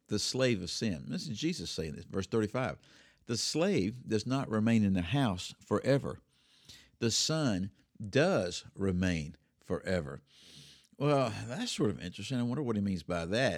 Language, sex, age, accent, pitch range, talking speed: English, male, 50-69, American, 90-110 Hz, 165 wpm